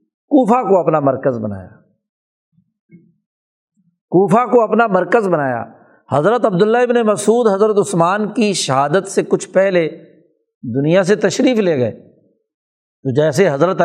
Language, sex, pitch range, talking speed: Urdu, male, 155-220 Hz, 125 wpm